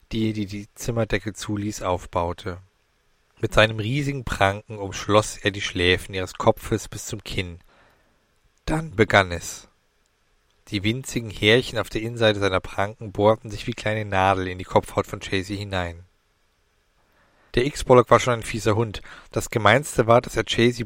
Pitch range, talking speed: 100-120 Hz, 155 wpm